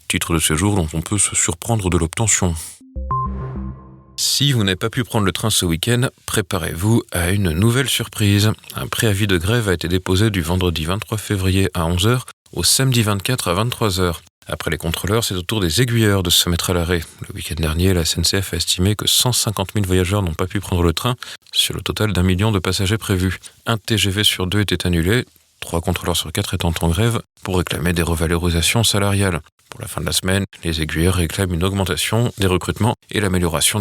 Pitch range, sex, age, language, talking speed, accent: 85-105 Hz, male, 40-59, French, 200 wpm, French